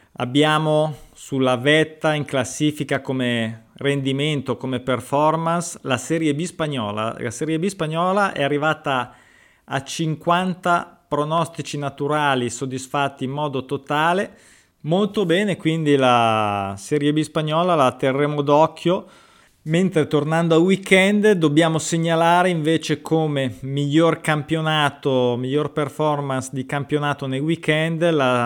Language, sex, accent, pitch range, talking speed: Italian, male, native, 130-155 Hz, 115 wpm